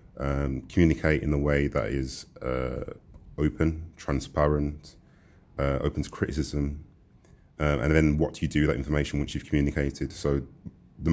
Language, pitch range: English, 70-80 Hz